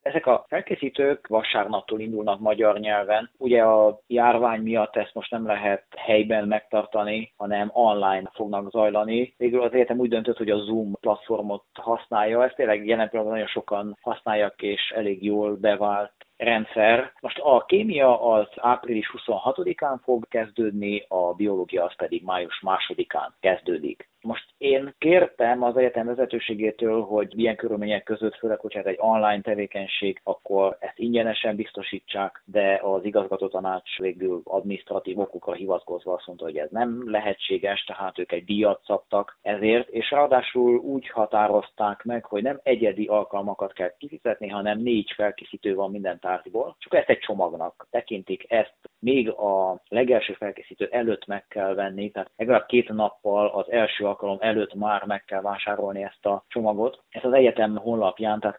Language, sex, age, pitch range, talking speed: Hungarian, male, 30-49, 100-115 Hz, 150 wpm